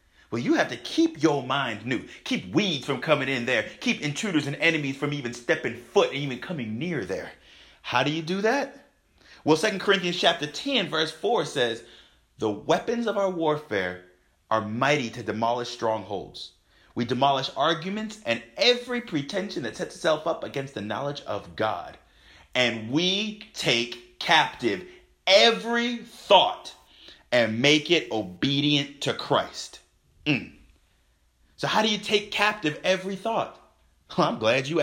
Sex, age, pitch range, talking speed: male, 30-49, 120-205 Hz, 155 wpm